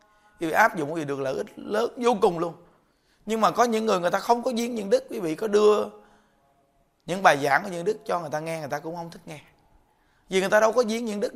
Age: 20-39